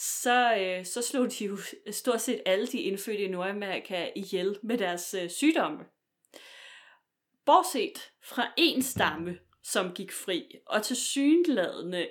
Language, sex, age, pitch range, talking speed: Danish, female, 20-39, 175-230 Hz, 135 wpm